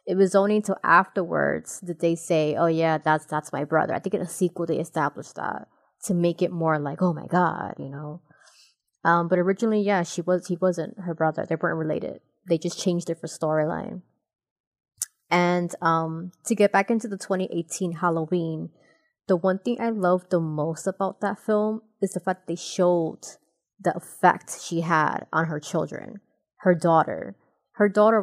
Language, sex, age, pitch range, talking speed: English, female, 20-39, 165-195 Hz, 185 wpm